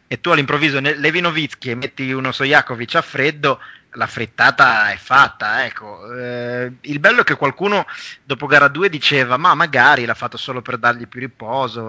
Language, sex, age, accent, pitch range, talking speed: Italian, male, 20-39, native, 120-145 Hz, 180 wpm